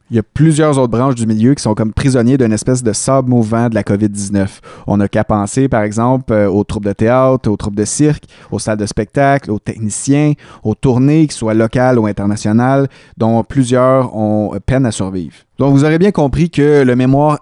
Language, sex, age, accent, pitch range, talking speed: French, male, 30-49, Canadian, 110-140 Hz, 210 wpm